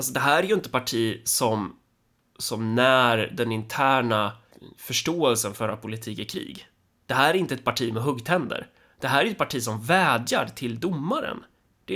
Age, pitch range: 20-39, 110-140 Hz